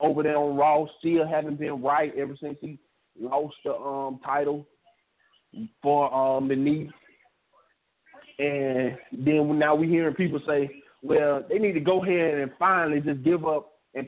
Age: 30-49